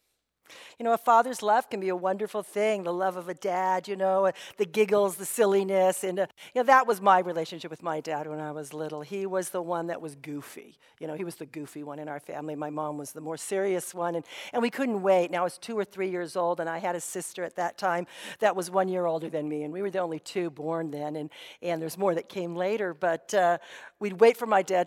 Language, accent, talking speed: English, American, 265 wpm